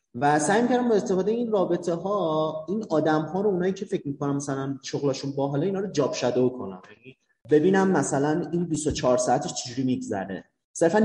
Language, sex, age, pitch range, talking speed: Persian, male, 30-49, 130-170 Hz, 170 wpm